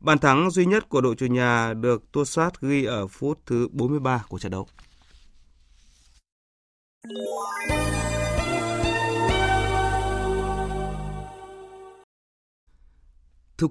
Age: 20-39